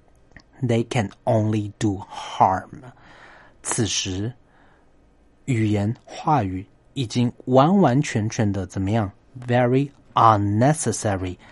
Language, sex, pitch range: Chinese, male, 105-140 Hz